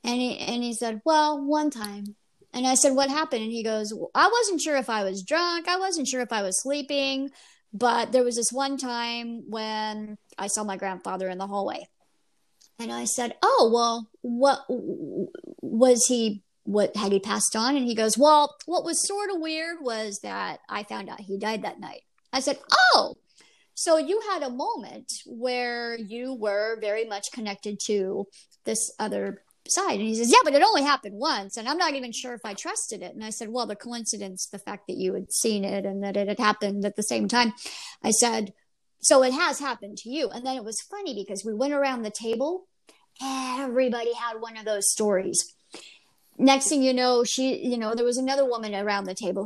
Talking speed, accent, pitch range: 210 wpm, American, 210-285 Hz